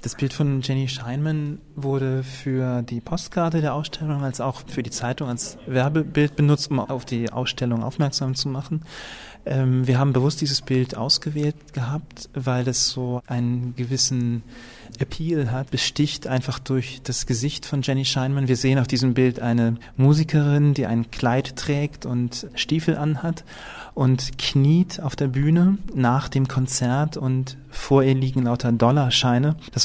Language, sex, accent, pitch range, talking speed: German, male, German, 120-140 Hz, 155 wpm